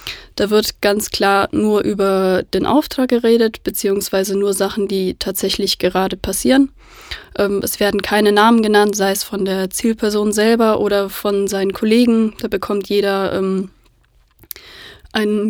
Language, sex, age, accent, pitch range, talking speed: German, female, 20-39, German, 195-220 Hz, 135 wpm